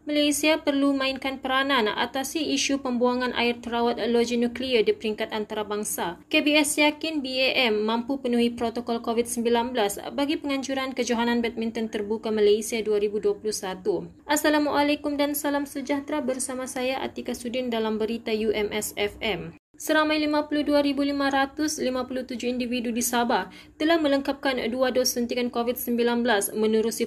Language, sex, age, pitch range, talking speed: Malay, female, 20-39, 225-270 Hz, 115 wpm